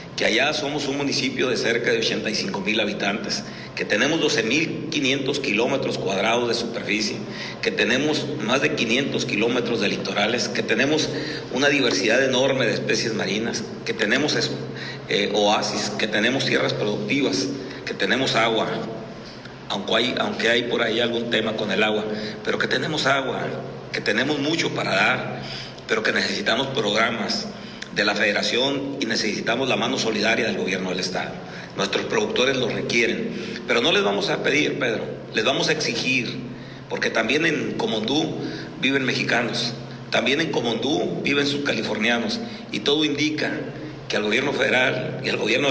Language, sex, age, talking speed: Spanish, male, 50-69, 155 wpm